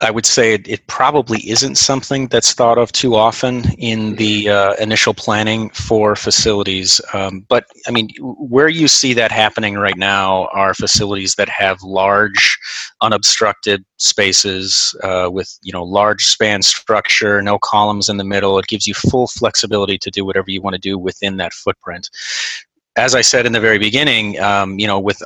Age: 30-49